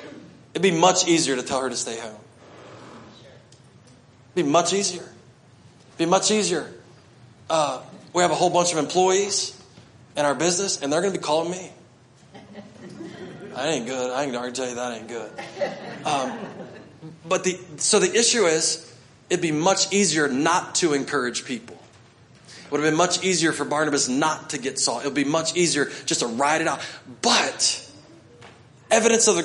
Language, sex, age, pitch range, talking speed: English, male, 20-39, 130-185 Hz, 180 wpm